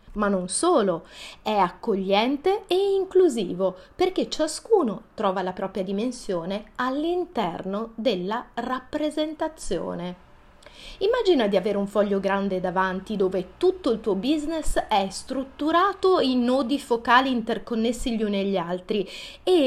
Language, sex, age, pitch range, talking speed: Italian, female, 30-49, 195-300 Hz, 120 wpm